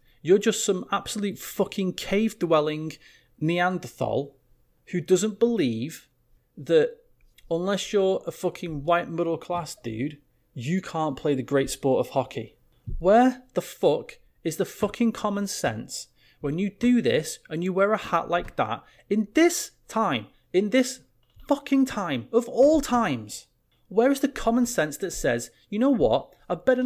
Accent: British